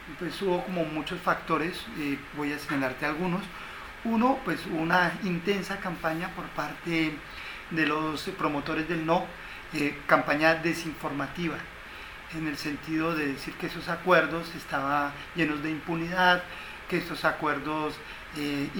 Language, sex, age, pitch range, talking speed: English, male, 40-59, 150-175 Hz, 130 wpm